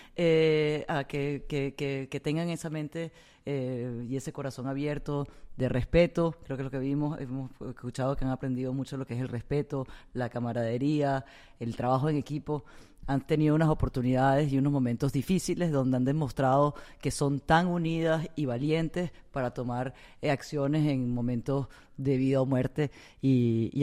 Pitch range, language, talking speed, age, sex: 130-150 Hz, English, 160 wpm, 30-49, female